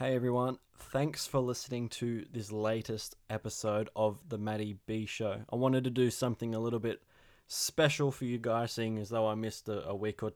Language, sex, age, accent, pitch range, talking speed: English, male, 20-39, Australian, 105-115 Hz, 205 wpm